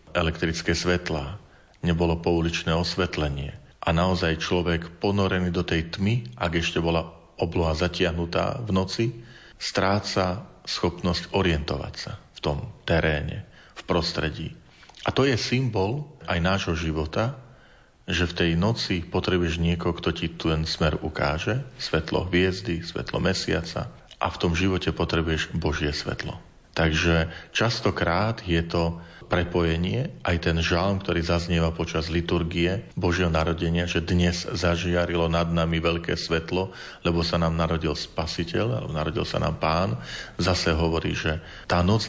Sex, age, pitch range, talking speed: male, 40-59, 80-95 Hz, 135 wpm